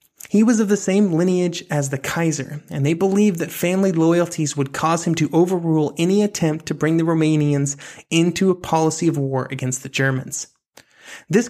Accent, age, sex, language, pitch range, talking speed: American, 30-49, male, English, 145-180 Hz, 185 wpm